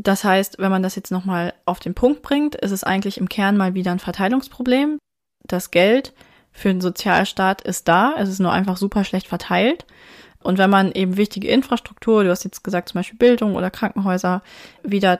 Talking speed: 195 wpm